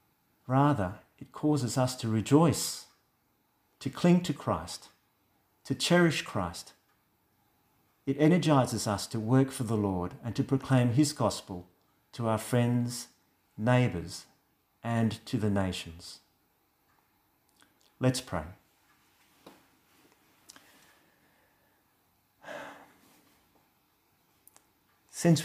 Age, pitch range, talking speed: 50-69, 100-130 Hz, 85 wpm